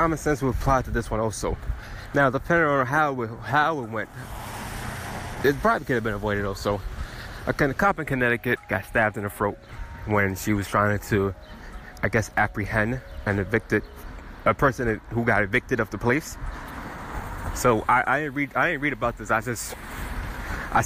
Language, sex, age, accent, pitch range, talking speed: English, male, 20-39, American, 100-130 Hz, 180 wpm